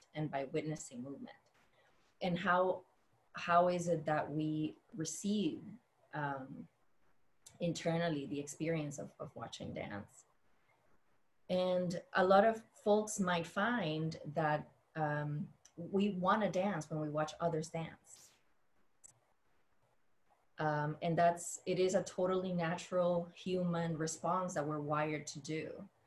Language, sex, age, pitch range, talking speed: English, female, 20-39, 155-175 Hz, 120 wpm